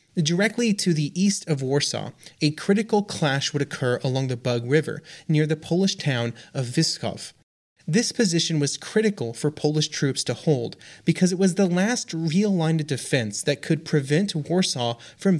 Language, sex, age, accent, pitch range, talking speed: English, male, 30-49, American, 135-175 Hz, 170 wpm